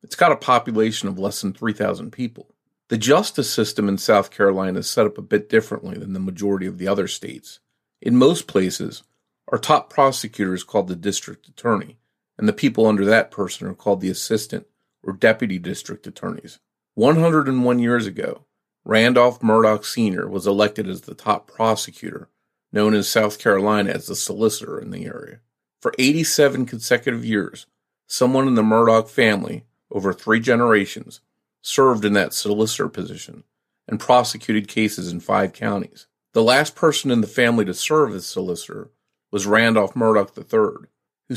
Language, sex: English, male